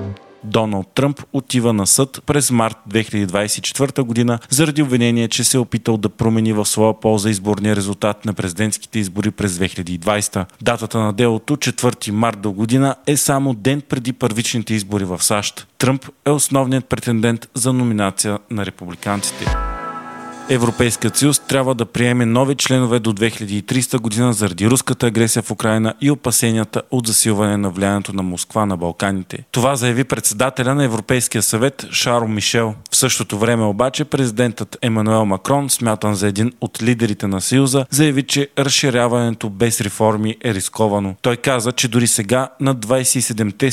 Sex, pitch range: male, 105-130 Hz